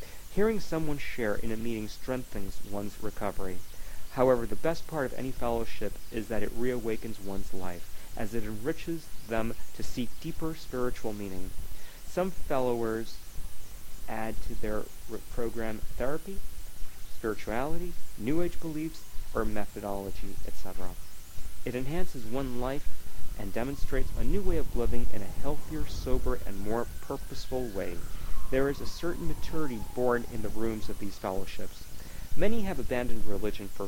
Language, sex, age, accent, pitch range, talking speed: English, male, 40-59, American, 100-130 Hz, 145 wpm